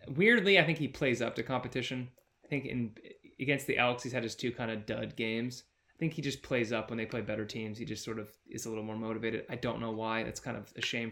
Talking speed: 275 wpm